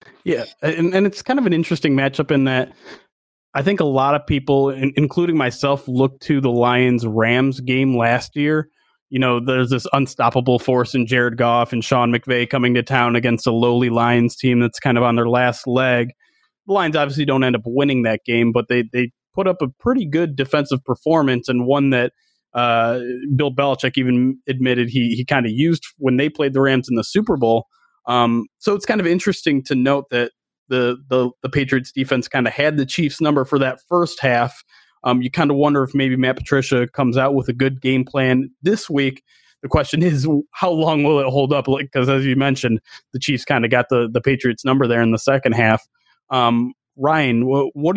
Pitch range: 125-145 Hz